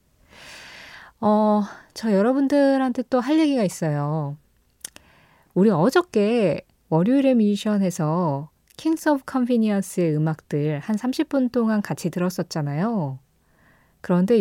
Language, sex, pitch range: Korean, female, 175-245 Hz